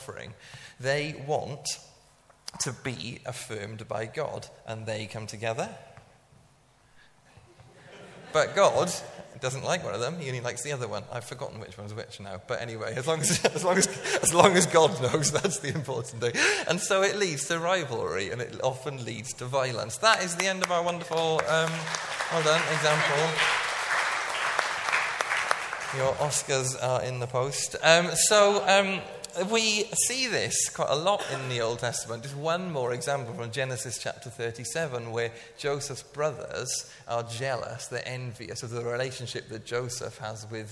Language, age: English, 30-49